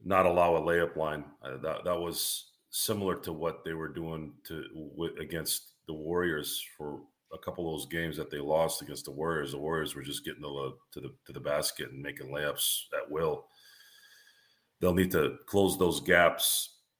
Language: English